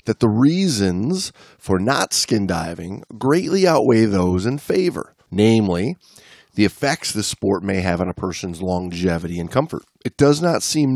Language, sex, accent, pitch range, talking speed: English, male, American, 100-150 Hz, 160 wpm